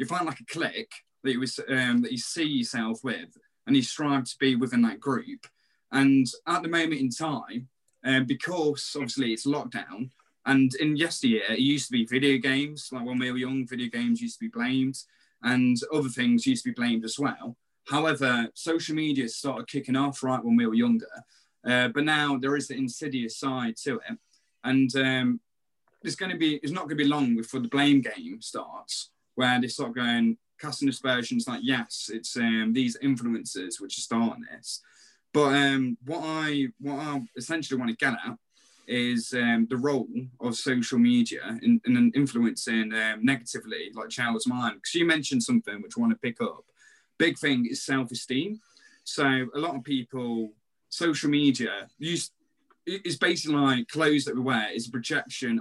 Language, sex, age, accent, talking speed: English, male, 20-39, British, 180 wpm